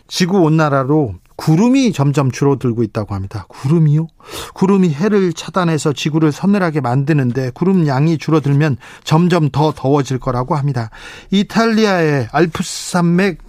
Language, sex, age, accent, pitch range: Korean, male, 40-59, native, 135-175 Hz